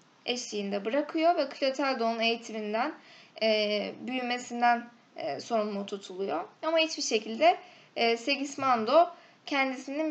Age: 10-29